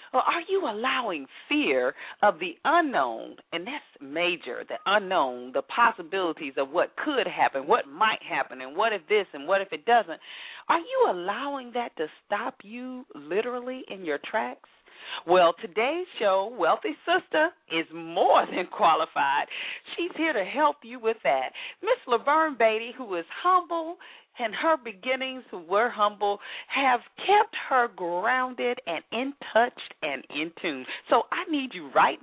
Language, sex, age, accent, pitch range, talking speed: English, female, 40-59, American, 220-335 Hz, 155 wpm